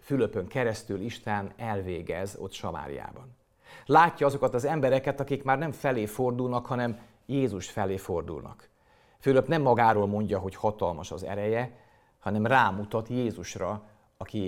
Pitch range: 105-125 Hz